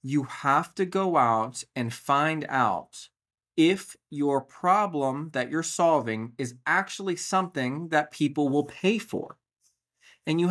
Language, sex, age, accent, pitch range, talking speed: English, male, 30-49, American, 125-165 Hz, 135 wpm